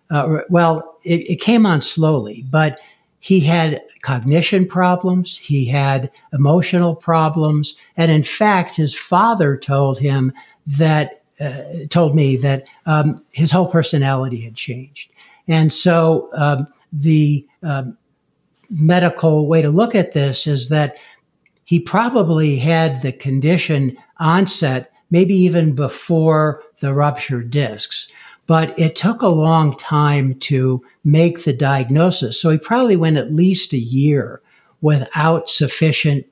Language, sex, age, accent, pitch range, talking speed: English, male, 60-79, American, 140-170 Hz, 130 wpm